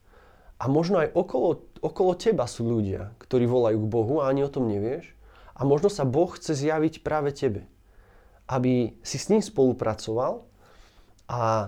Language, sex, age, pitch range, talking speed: Slovak, male, 30-49, 110-145 Hz, 160 wpm